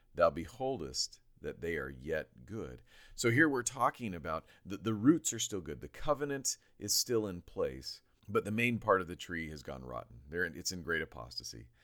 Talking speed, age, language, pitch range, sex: 205 wpm, 40-59, English, 70-100 Hz, male